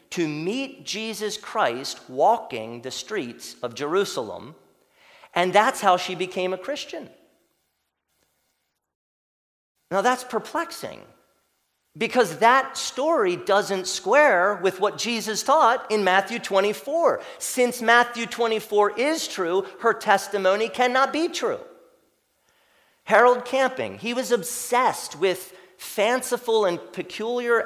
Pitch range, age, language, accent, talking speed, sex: 155-245 Hz, 40-59, English, American, 110 wpm, male